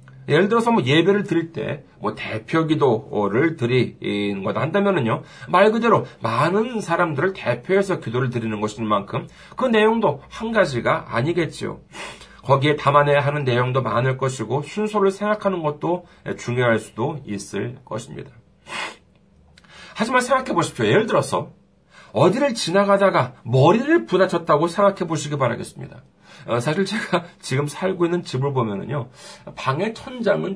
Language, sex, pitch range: Korean, male, 135-205 Hz